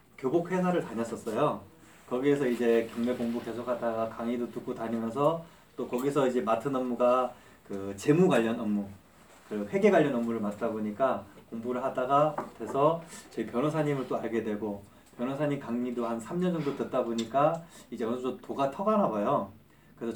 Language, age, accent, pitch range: Korean, 20-39, native, 115-165 Hz